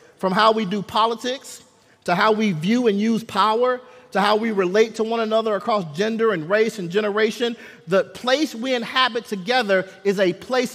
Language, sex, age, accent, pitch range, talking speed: English, male, 40-59, American, 160-225 Hz, 185 wpm